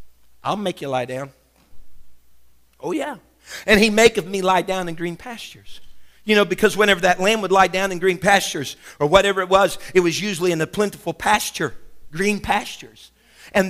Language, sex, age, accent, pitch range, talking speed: English, male, 50-69, American, 130-200 Hz, 190 wpm